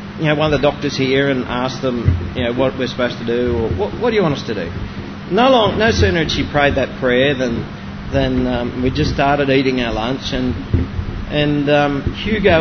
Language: English